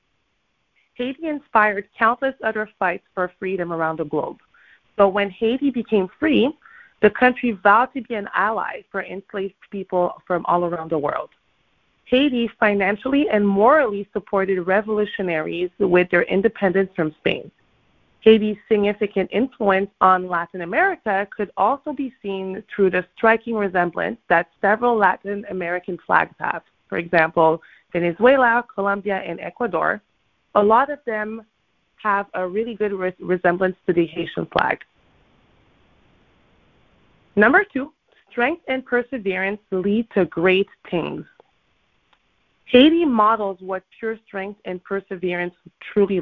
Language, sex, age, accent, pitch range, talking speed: English, female, 30-49, American, 185-230 Hz, 125 wpm